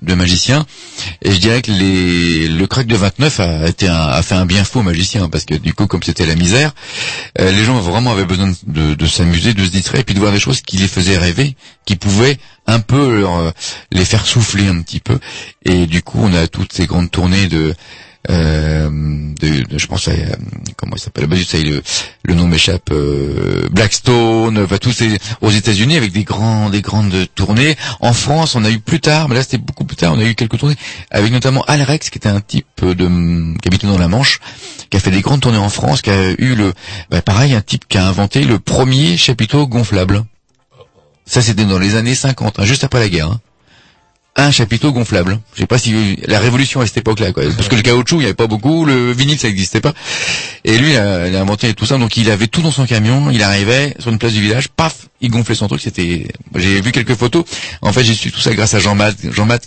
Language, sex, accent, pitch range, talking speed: French, male, French, 90-125 Hz, 235 wpm